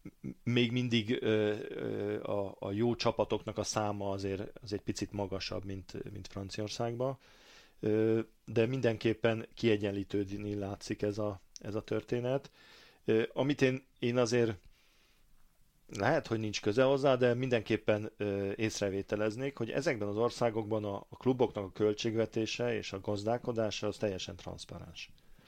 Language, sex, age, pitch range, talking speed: Hungarian, male, 40-59, 95-115 Hz, 120 wpm